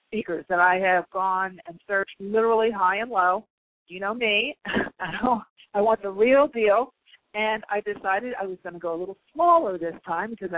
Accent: American